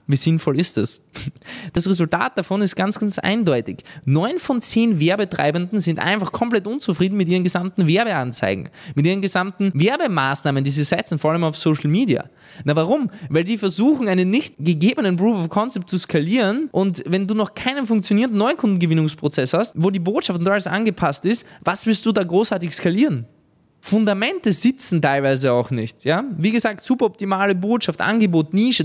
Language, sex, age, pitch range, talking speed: German, male, 20-39, 160-210 Hz, 170 wpm